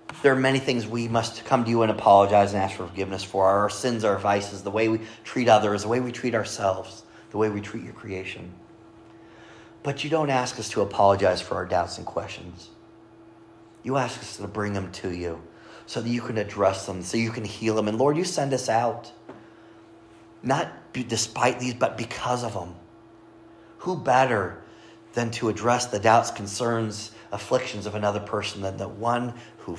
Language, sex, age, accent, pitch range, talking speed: English, male, 30-49, American, 100-115 Hz, 190 wpm